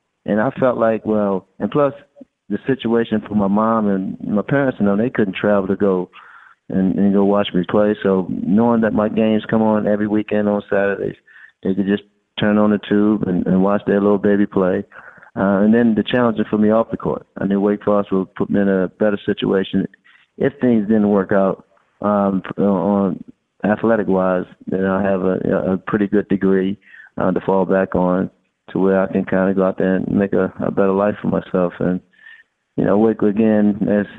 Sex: male